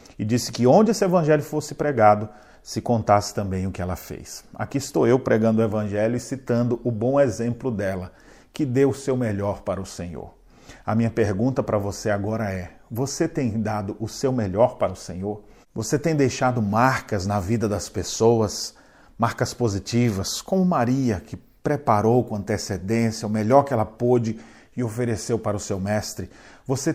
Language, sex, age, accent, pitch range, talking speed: Portuguese, male, 40-59, Brazilian, 105-125 Hz, 175 wpm